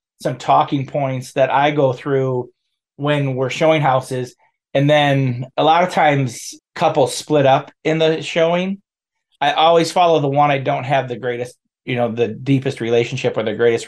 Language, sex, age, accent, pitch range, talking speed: English, male, 30-49, American, 125-150 Hz, 175 wpm